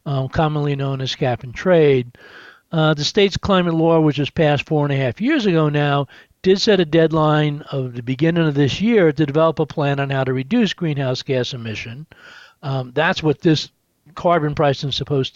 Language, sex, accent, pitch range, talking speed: English, male, American, 140-165 Hz, 195 wpm